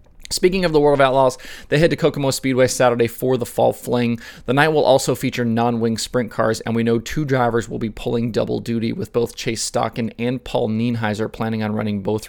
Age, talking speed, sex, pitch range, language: 20-39, 220 wpm, male, 105-125 Hz, English